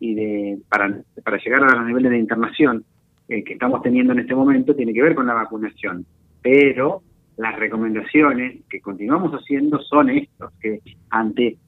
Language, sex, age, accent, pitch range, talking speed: Spanish, male, 30-49, Argentinian, 115-150 Hz, 170 wpm